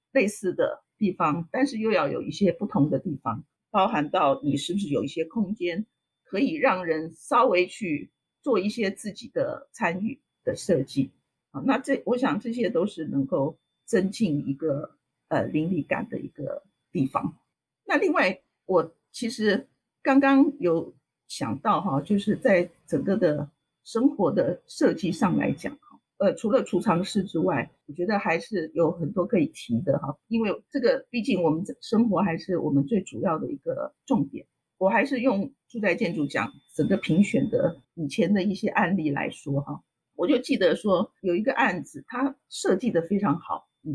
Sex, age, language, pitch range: female, 50-69, Chinese, 165-250 Hz